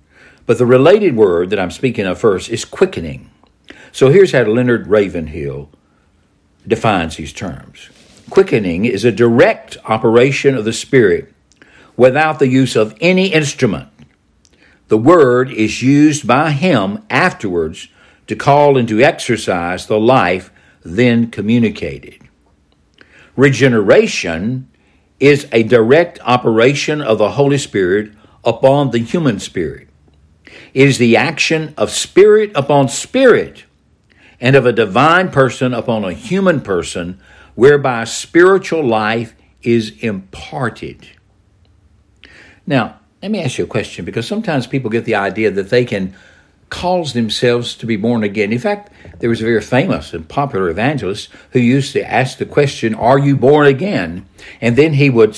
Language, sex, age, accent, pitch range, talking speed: English, male, 60-79, American, 105-140 Hz, 140 wpm